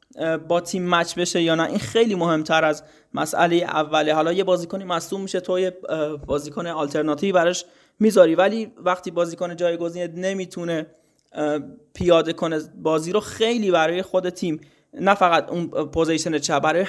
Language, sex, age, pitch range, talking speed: Persian, male, 20-39, 160-190 Hz, 150 wpm